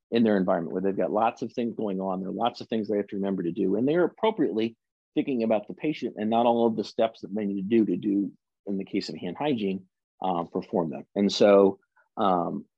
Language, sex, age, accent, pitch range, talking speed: English, male, 40-59, American, 95-115 Hz, 255 wpm